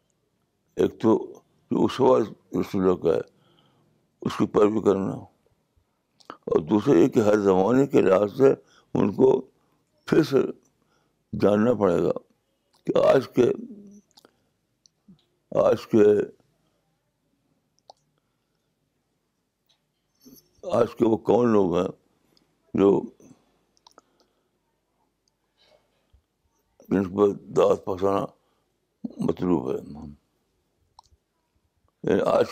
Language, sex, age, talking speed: Urdu, male, 60-79, 70 wpm